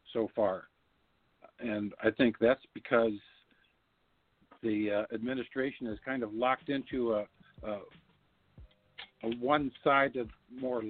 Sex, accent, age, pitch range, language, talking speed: male, American, 60-79, 100-125 Hz, English, 110 wpm